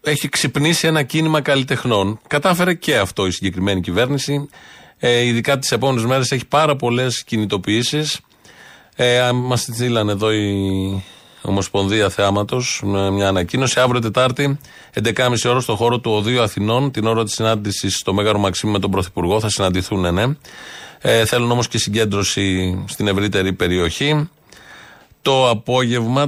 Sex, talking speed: male, 140 wpm